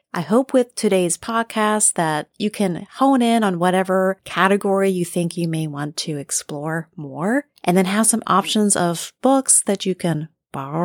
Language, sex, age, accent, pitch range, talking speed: English, female, 40-59, American, 160-210 Hz, 175 wpm